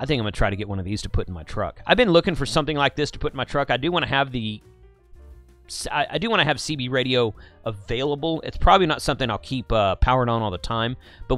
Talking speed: 295 wpm